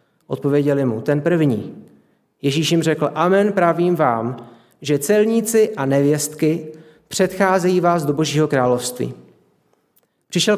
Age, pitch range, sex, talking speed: 40-59, 145-170 Hz, male, 115 wpm